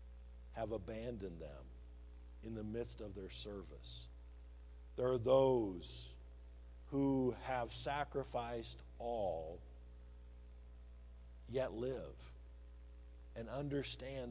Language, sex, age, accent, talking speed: English, male, 50-69, American, 85 wpm